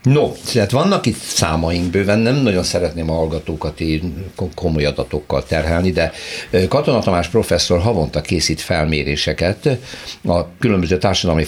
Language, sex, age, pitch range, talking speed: Hungarian, male, 60-79, 80-100 Hz, 125 wpm